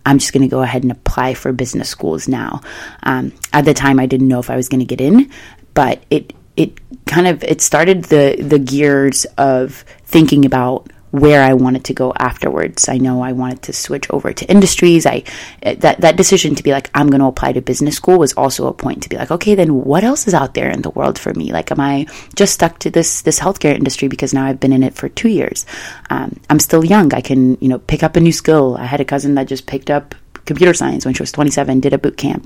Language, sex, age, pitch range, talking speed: English, female, 20-39, 130-155 Hz, 255 wpm